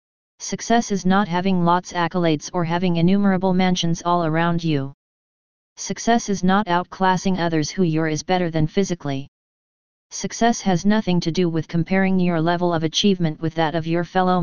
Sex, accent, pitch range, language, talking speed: female, American, 165-190 Hz, English, 165 wpm